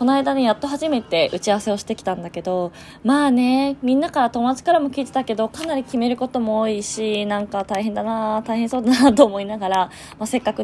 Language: Japanese